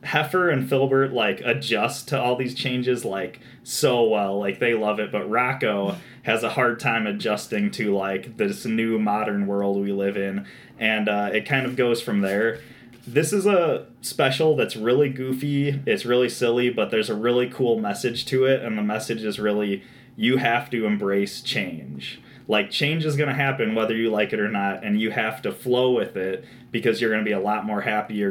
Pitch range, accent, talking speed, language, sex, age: 105-130 Hz, American, 205 wpm, English, male, 20-39